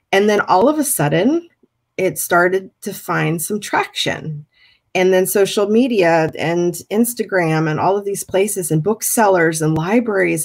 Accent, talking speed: American, 155 wpm